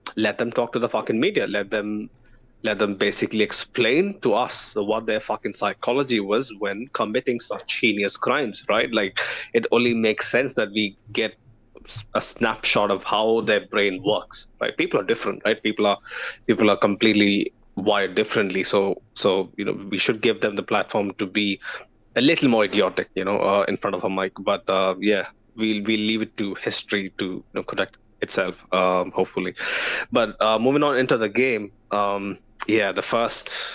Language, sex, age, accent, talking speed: English, male, 20-39, Indian, 185 wpm